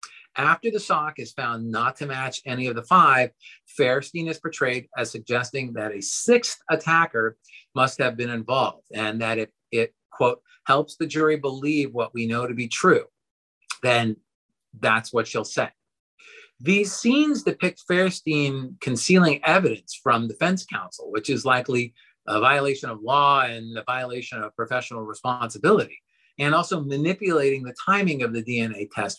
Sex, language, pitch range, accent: male, English, 120-170 Hz, American